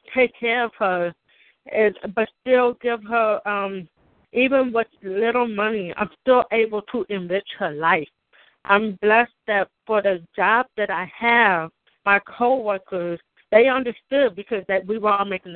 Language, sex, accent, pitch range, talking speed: English, female, American, 190-240 Hz, 150 wpm